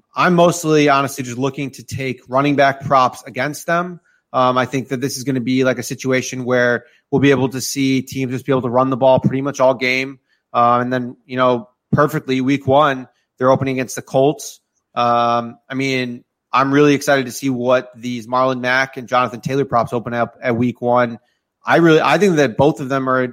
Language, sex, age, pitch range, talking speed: English, male, 30-49, 125-135 Hz, 220 wpm